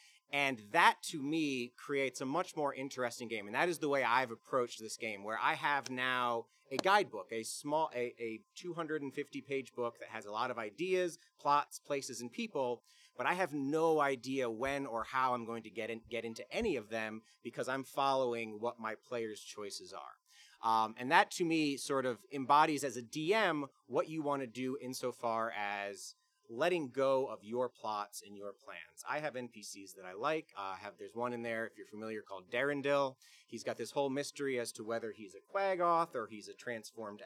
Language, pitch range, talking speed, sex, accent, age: English, 120-195 Hz, 200 wpm, male, American, 30-49